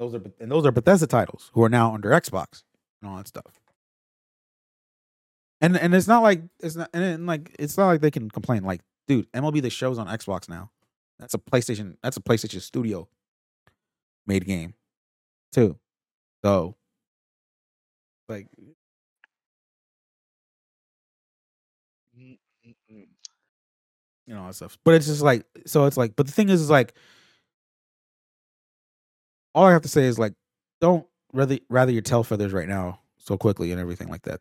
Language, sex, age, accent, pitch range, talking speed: English, male, 30-49, American, 100-130 Hz, 160 wpm